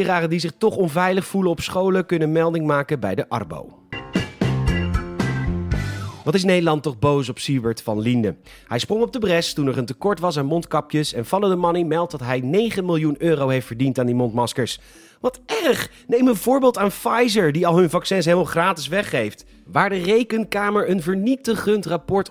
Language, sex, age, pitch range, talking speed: Dutch, male, 40-59, 130-195 Hz, 185 wpm